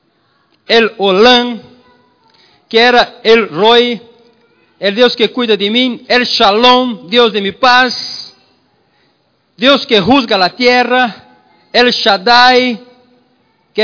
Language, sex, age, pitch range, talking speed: Spanish, male, 50-69, 215-270 Hz, 115 wpm